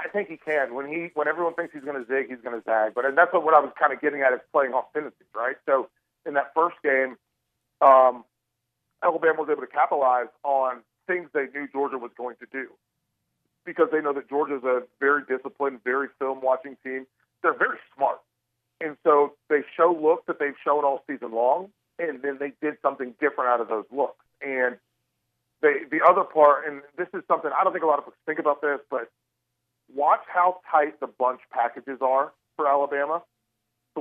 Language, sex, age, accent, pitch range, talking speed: English, male, 40-59, American, 130-155 Hz, 210 wpm